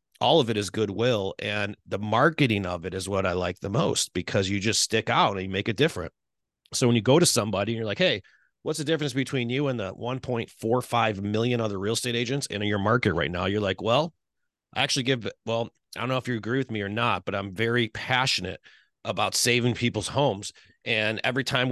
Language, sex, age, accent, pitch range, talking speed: English, male, 30-49, American, 100-125 Hz, 225 wpm